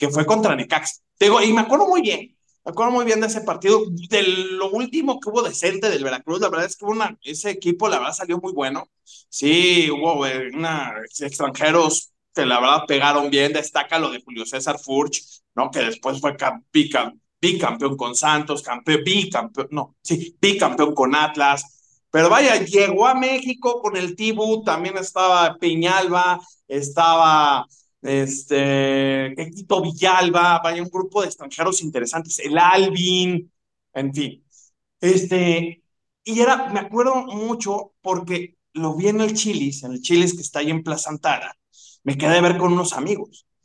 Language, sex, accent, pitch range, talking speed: Spanish, male, Mexican, 150-215 Hz, 165 wpm